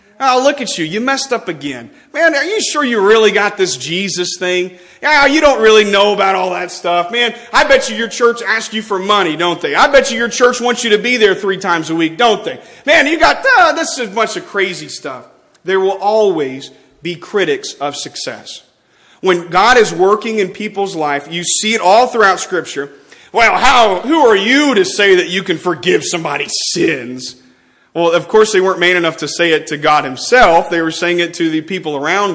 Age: 40-59